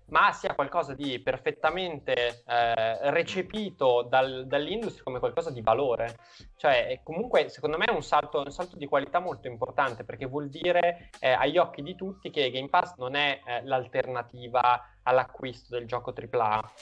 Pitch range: 125-155 Hz